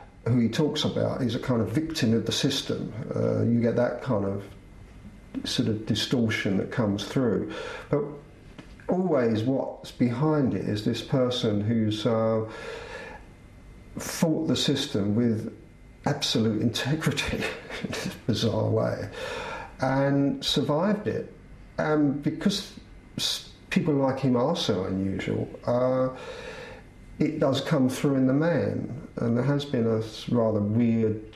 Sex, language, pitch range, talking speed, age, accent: male, English, 110-140 Hz, 135 wpm, 50-69, British